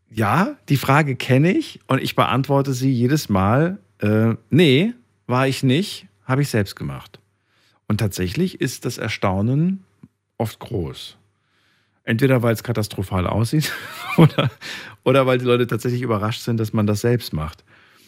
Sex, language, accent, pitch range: male, German, German, 100-130 Hz